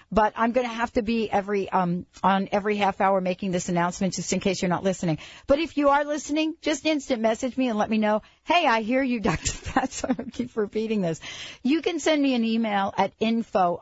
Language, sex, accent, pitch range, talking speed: English, female, American, 185-245 Hz, 235 wpm